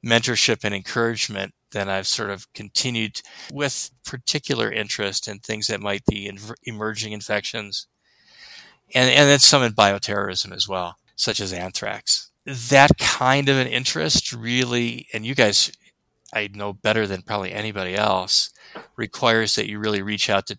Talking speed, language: 150 wpm, English